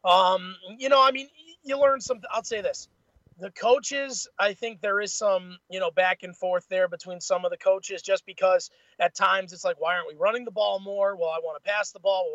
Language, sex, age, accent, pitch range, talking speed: English, male, 30-49, American, 175-230 Hz, 245 wpm